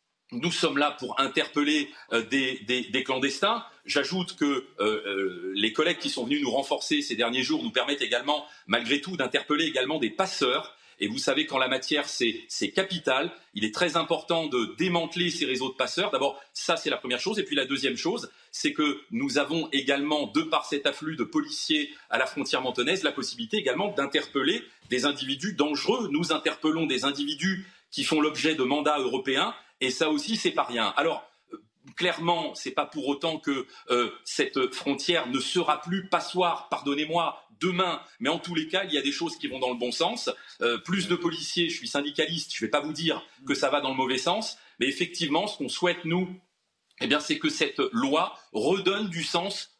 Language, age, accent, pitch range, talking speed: French, 30-49, French, 145-185 Hz, 200 wpm